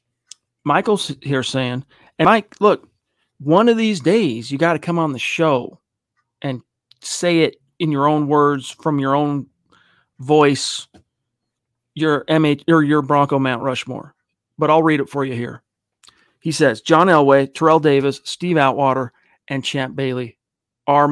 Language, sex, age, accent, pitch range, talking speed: English, male, 40-59, American, 125-155 Hz, 155 wpm